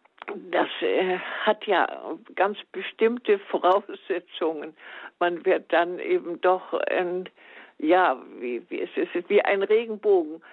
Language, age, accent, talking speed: German, 60-79, German, 110 wpm